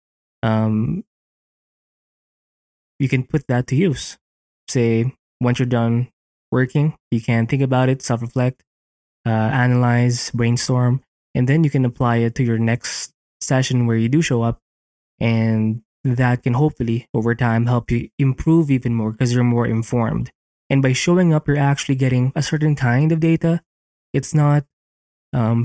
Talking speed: 155 wpm